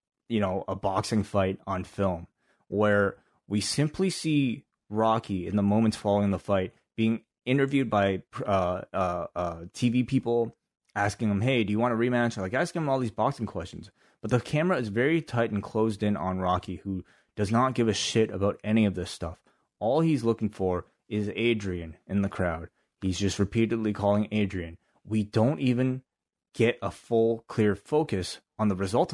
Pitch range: 95-115 Hz